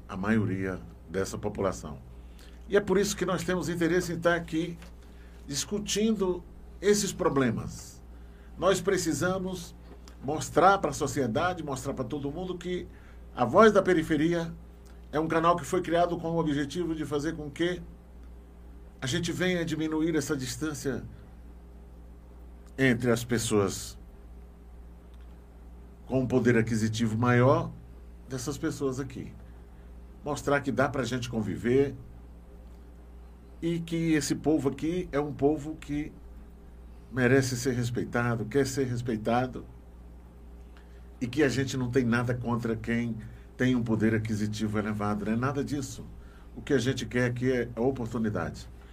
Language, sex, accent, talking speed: Portuguese, male, Brazilian, 135 wpm